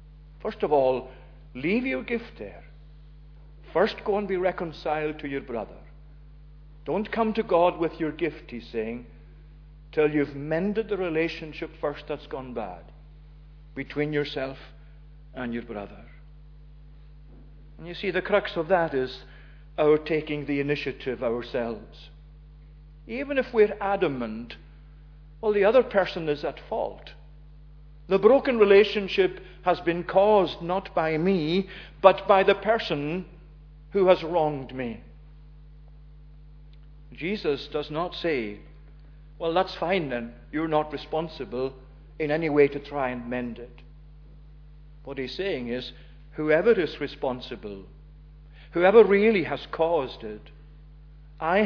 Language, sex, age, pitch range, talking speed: English, male, 50-69, 150-175 Hz, 130 wpm